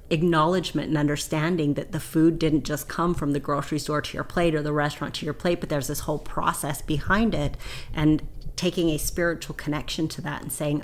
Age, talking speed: 30-49, 210 wpm